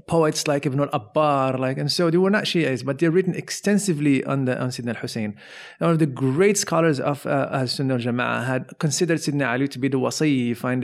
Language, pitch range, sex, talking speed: English, 125-165 Hz, male, 235 wpm